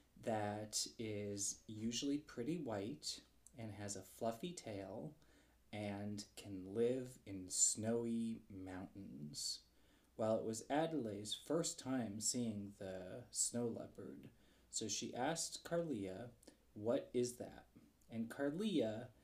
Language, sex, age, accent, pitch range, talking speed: English, male, 20-39, American, 105-145 Hz, 110 wpm